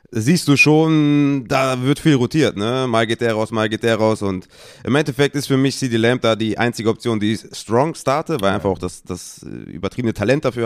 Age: 30-49